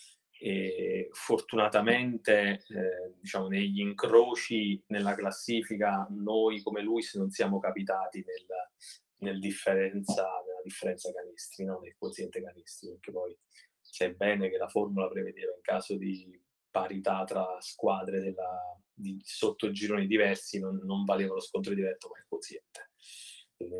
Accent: native